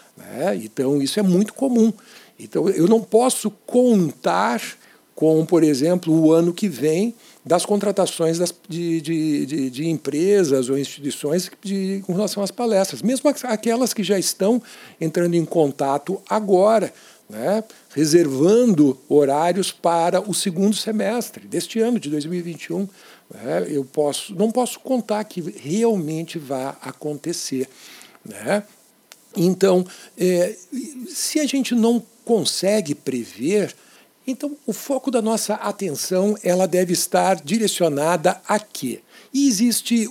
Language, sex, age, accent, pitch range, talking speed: Portuguese, male, 60-79, Brazilian, 155-220 Hz, 125 wpm